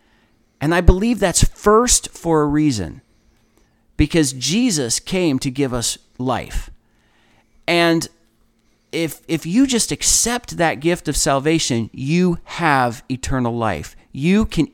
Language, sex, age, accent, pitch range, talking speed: English, male, 40-59, American, 120-170 Hz, 125 wpm